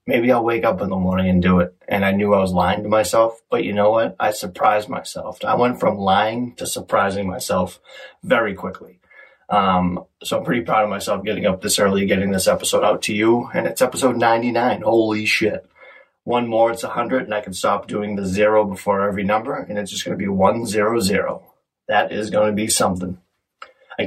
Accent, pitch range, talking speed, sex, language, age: American, 95-115 Hz, 220 wpm, male, English, 30-49